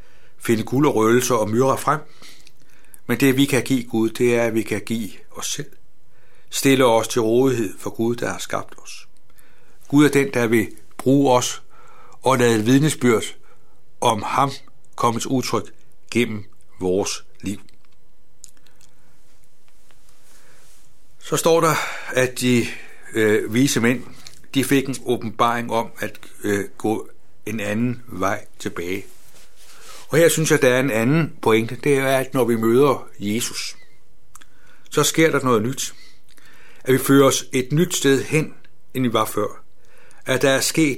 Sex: male